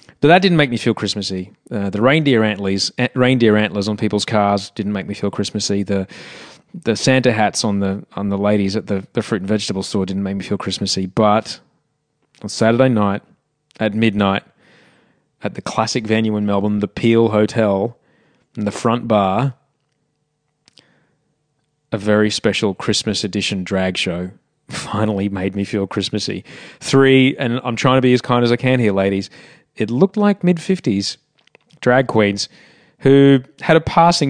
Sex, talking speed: male, 170 wpm